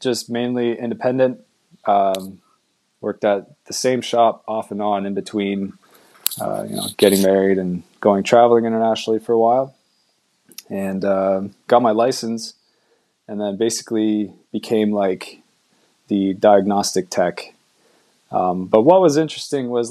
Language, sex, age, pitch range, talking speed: English, male, 20-39, 100-125 Hz, 135 wpm